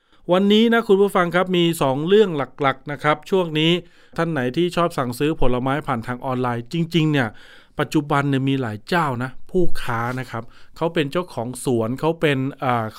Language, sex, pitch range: Thai, male, 130-175 Hz